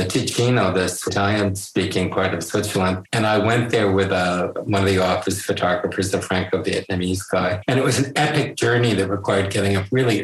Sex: male